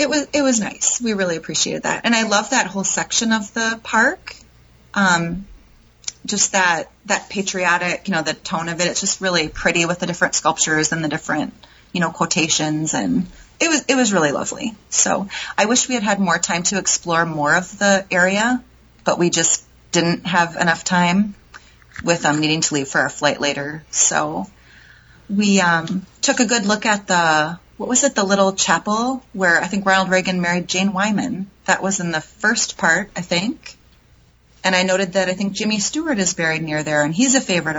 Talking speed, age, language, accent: 205 wpm, 30-49, English, American